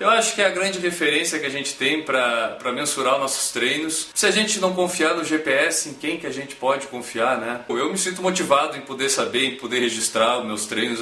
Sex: male